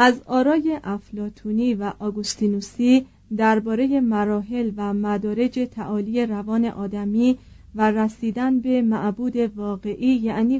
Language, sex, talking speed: Persian, female, 100 wpm